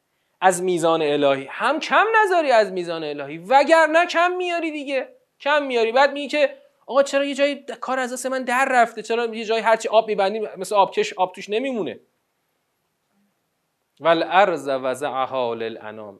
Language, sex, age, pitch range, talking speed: Persian, male, 30-49, 130-210 Hz, 155 wpm